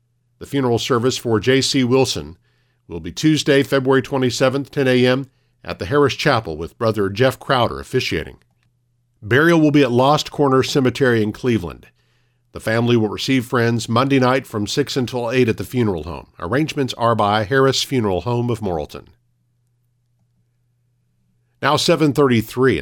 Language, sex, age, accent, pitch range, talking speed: English, male, 50-69, American, 110-135 Hz, 145 wpm